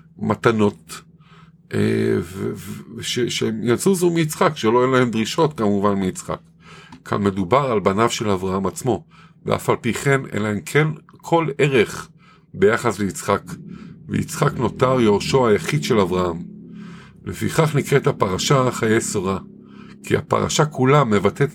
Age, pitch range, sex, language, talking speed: 50-69, 100-140 Hz, male, Hebrew, 135 wpm